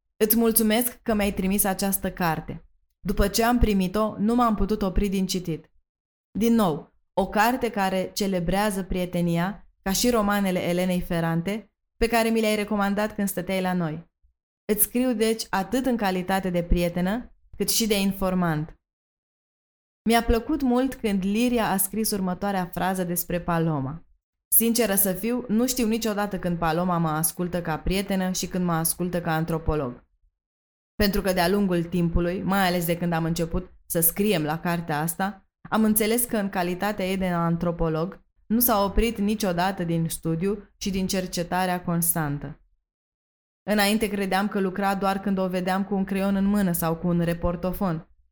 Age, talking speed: 20-39, 160 wpm